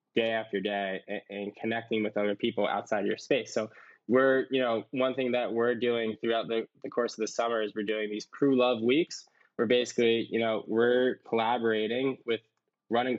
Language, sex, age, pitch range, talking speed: English, male, 10-29, 105-120 Hz, 195 wpm